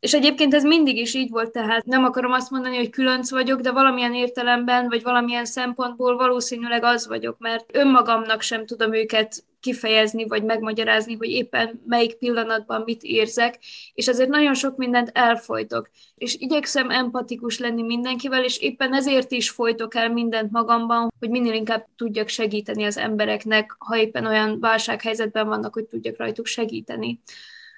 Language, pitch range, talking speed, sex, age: Hungarian, 225-245 Hz, 160 wpm, female, 20-39